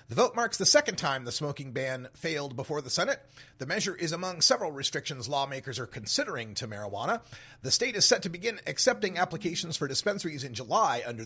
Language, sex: English, male